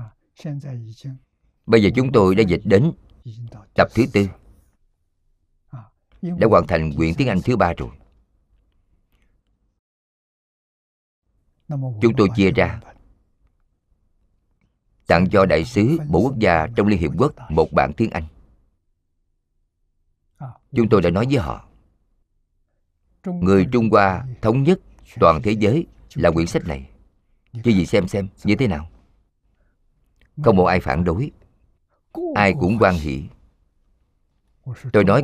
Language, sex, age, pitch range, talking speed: Vietnamese, male, 50-69, 85-115 Hz, 125 wpm